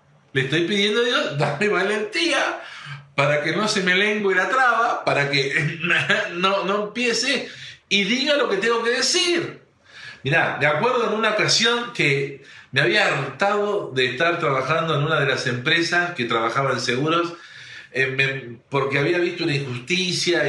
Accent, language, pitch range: Argentinian, Spanish, 140-195 Hz